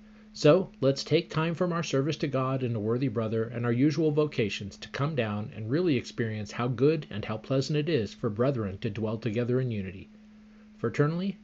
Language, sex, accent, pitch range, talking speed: English, male, American, 120-185 Hz, 200 wpm